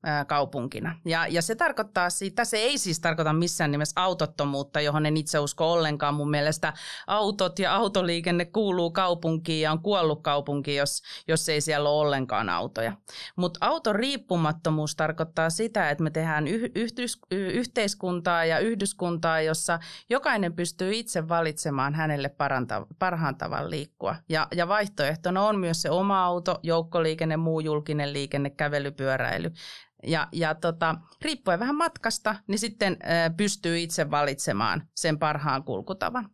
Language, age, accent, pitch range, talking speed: Finnish, 30-49, native, 155-200 Hz, 135 wpm